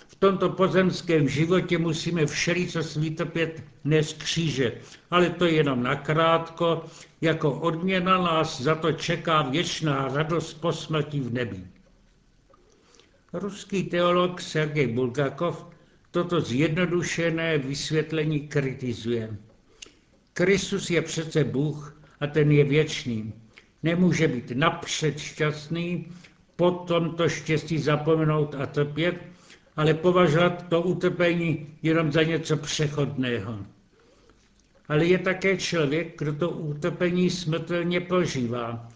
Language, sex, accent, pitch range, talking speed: Czech, male, native, 150-175 Hz, 105 wpm